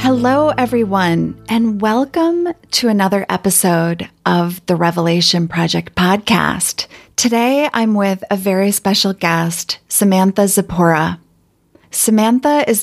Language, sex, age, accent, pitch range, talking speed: English, female, 30-49, American, 175-205 Hz, 110 wpm